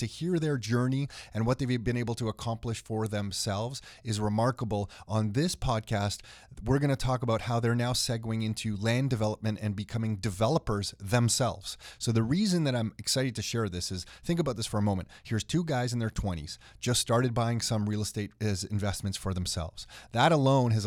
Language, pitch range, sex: English, 105-120 Hz, male